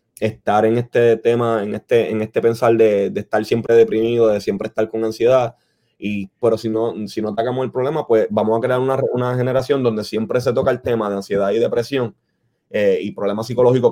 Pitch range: 110-130 Hz